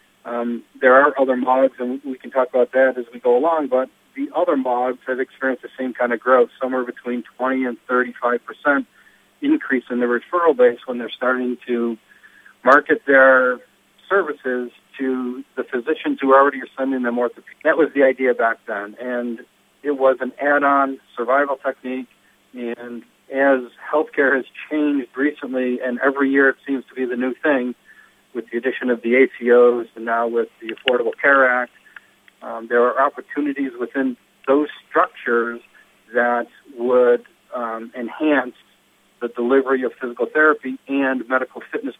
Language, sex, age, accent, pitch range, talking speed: English, male, 50-69, American, 120-135 Hz, 160 wpm